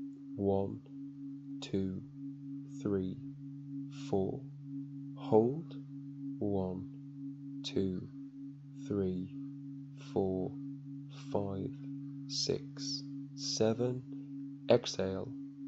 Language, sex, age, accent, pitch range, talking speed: English, male, 20-39, British, 130-140 Hz, 50 wpm